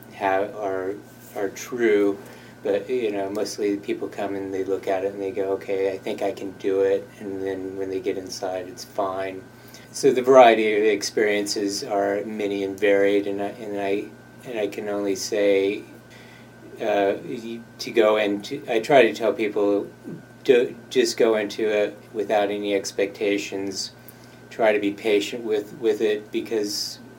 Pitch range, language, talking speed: 100-110 Hz, English, 165 wpm